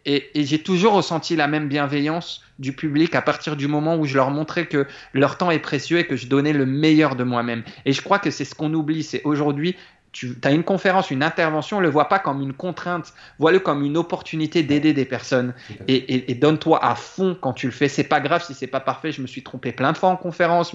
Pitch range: 130-165 Hz